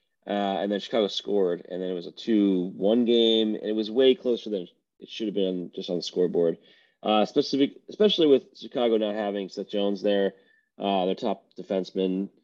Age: 30-49